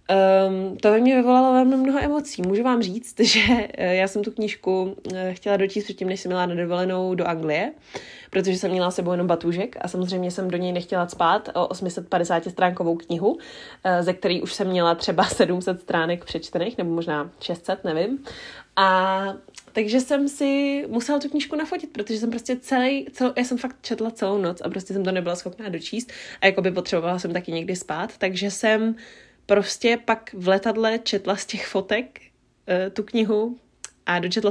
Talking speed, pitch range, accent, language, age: 180 wpm, 180-225 Hz, native, Czech, 20-39